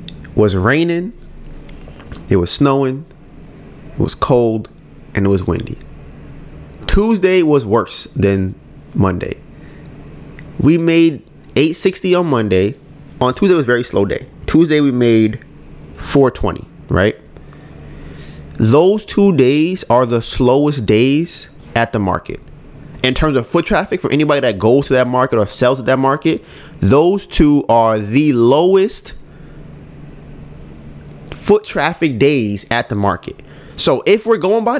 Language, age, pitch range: English, 20-39, 120-180 Hz